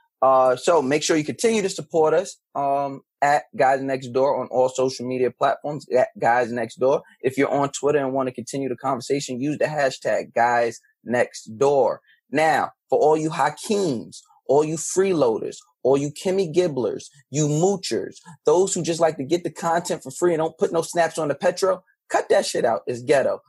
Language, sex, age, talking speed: English, male, 20-39, 195 wpm